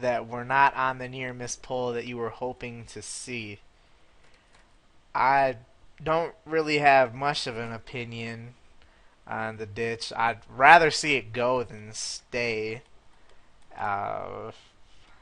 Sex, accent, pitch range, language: male, American, 115-135 Hz, English